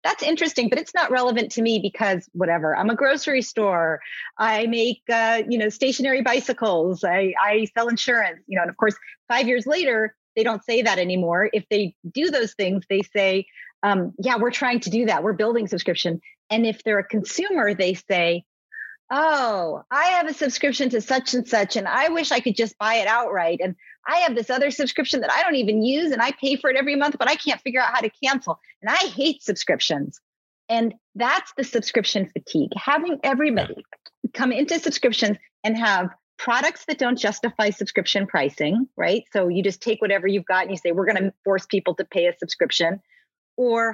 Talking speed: 205 wpm